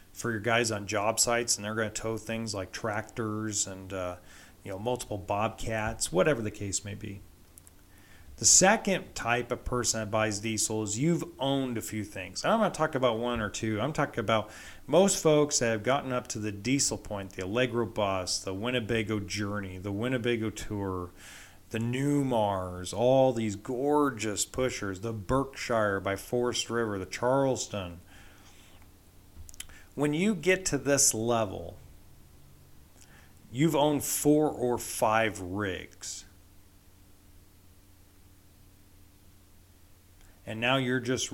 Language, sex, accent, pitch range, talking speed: English, male, American, 95-120 Hz, 140 wpm